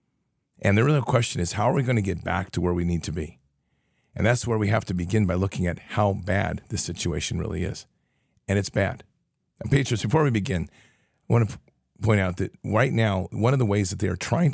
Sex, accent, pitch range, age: male, American, 90-110 Hz, 50-69